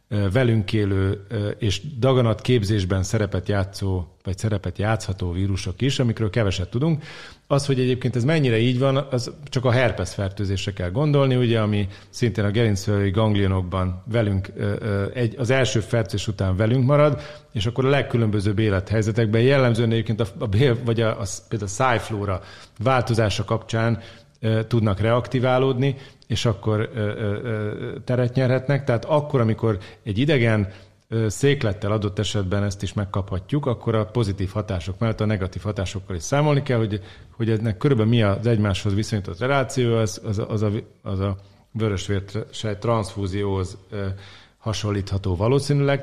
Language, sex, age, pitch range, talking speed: Hungarian, male, 40-59, 100-125 Hz, 135 wpm